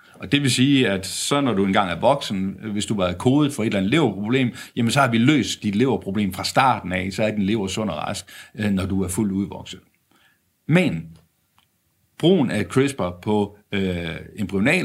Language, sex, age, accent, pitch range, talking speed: Danish, male, 60-79, native, 100-135 Hz, 200 wpm